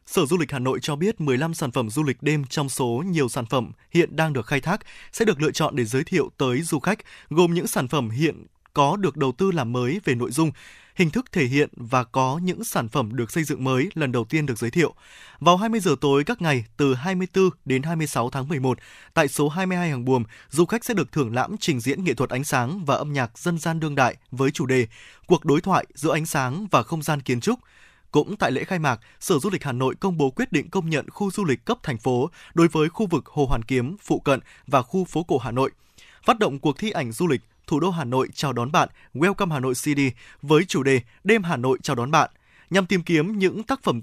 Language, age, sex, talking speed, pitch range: Vietnamese, 20-39, male, 255 wpm, 130-180 Hz